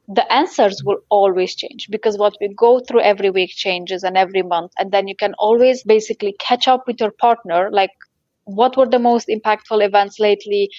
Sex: female